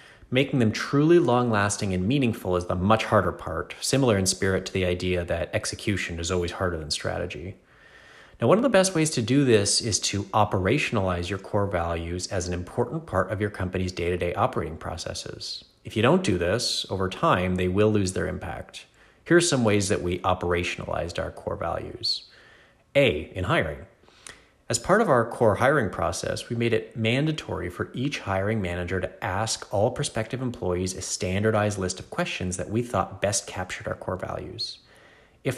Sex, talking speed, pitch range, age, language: male, 180 wpm, 90-115 Hz, 30-49, English